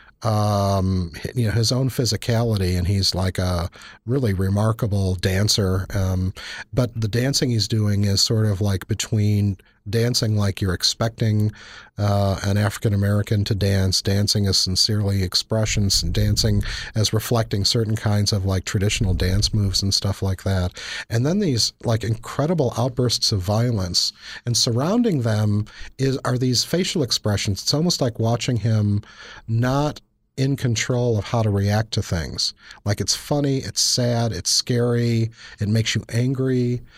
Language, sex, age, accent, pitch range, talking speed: English, male, 40-59, American, 100-120 Hz, 150 wpm